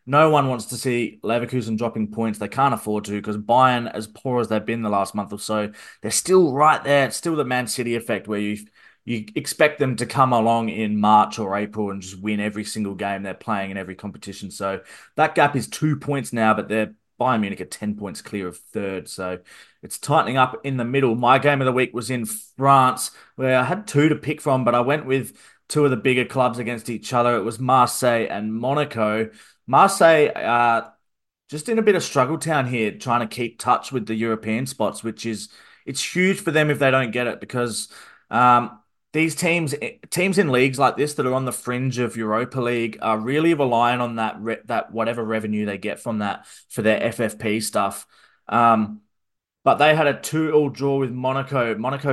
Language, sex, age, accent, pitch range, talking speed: English, male, 20-39, Australian, 110-135 Hz, 215 wpm